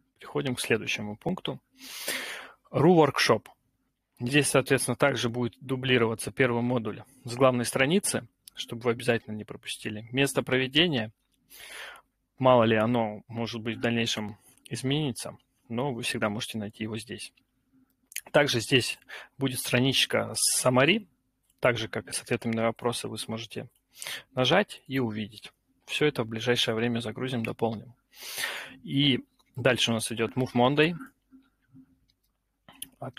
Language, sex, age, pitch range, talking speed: Russian, male, 30-49, 115-130 Hz, 125 wpm